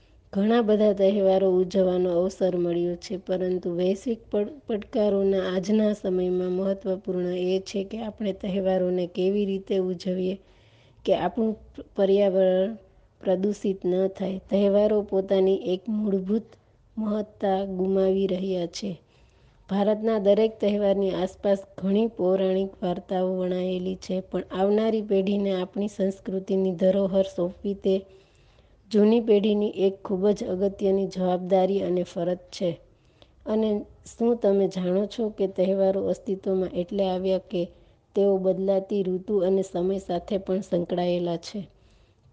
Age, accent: 20-39, native